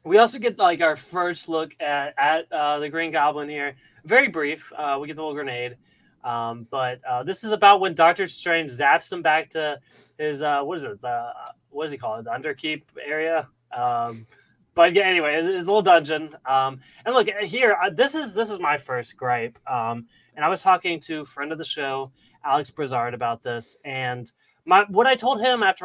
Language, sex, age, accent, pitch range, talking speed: English, male, 20-39, American, 140-210 Hz, 210 wpm